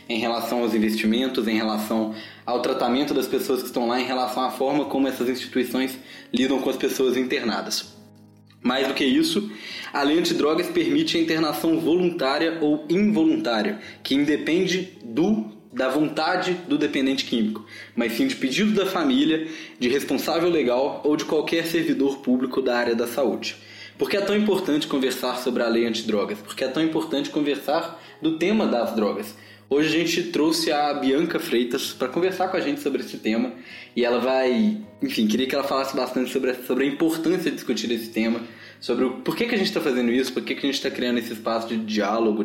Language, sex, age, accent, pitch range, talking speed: Portuguese, male, 20-39, Brazilian, 115-160 Hz, 190 wpm